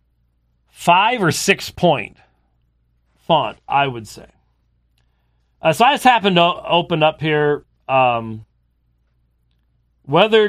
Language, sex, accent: English, male, American